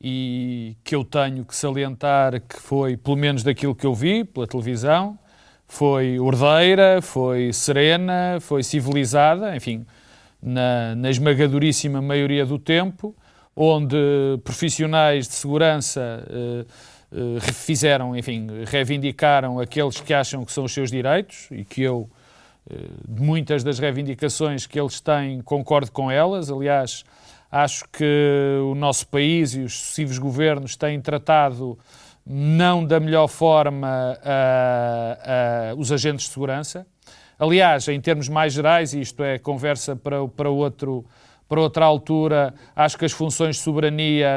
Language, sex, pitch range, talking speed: Portuguese, male, 130-150 Hz, 140 wpm